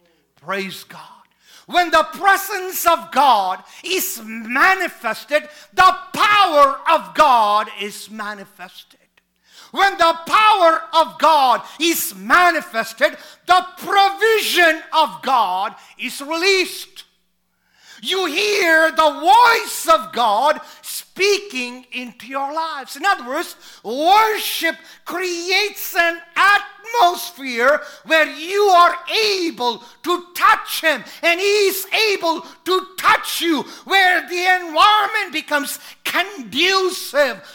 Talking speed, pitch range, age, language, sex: 100 wpm, 285-370 Hz, 50-69, English, male